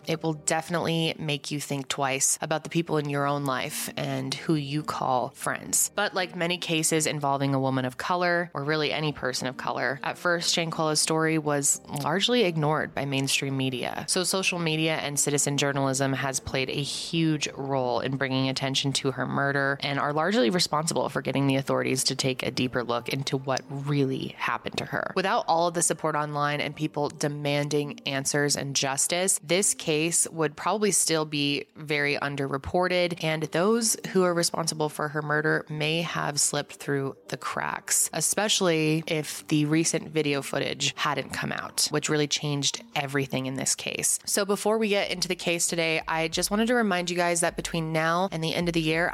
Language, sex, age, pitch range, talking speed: English, female, 20-39, 140-170 Hz, 190 wpm